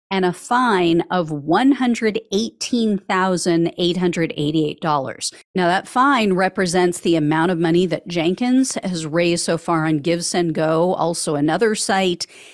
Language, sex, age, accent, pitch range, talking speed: English, female, 40-59, American, 170-245 Hz, 125 wpm